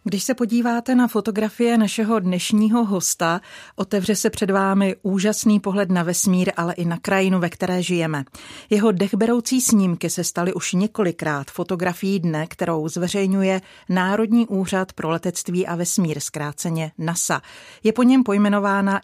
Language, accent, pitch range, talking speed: Czech, native, 170-205 Hz, 145 wpm